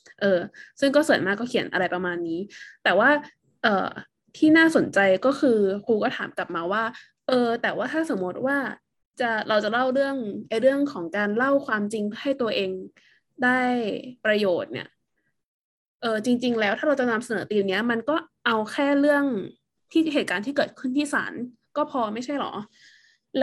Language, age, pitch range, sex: Thai, 20-39, 200-270 Hz, female